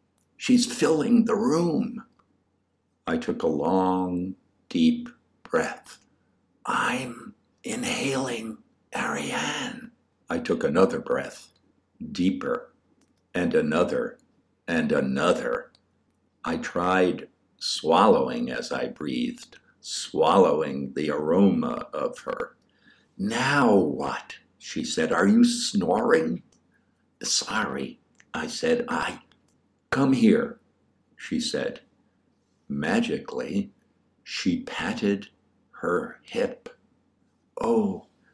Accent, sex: American, male